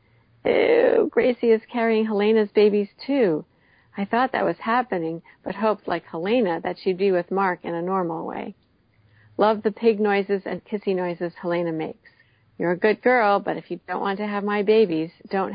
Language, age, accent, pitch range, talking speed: English, 50-69, American, 175-215 Hz, 185 wpm